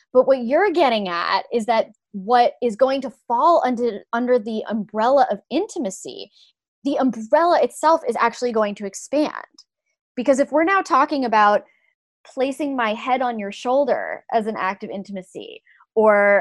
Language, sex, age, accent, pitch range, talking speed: English, female, 20-39, American, 200-255 Hz, 160 wpm